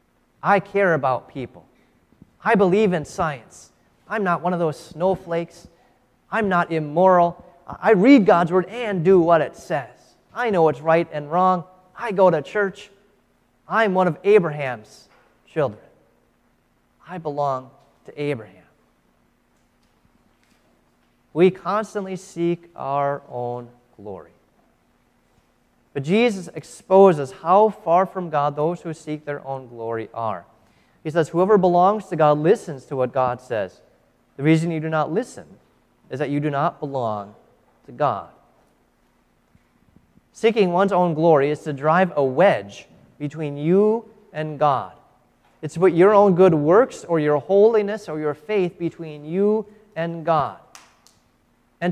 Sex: male